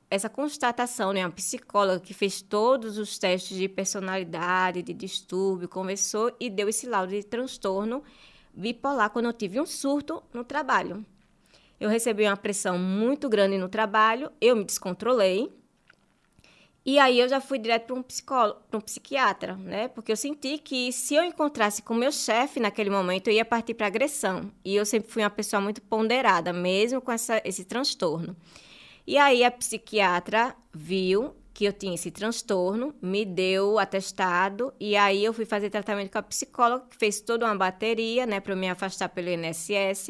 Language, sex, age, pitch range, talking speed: Portuguese, female, 20-39, 195-245 Hz, 175 wpm